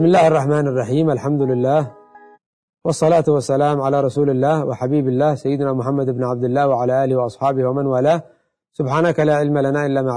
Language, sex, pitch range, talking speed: Arabic, male, 140-175 Hz, 170 wpm